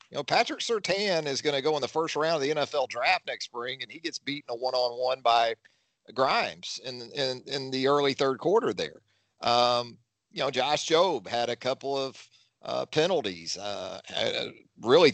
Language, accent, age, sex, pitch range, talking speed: English, American, 40-59, male, 120-155 Hz, 190 wpm